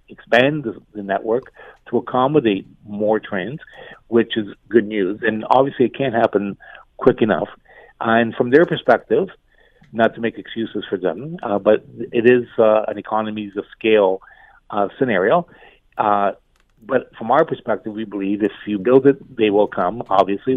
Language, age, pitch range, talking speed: English, 50-69, 105-120 Hz, 160 wpm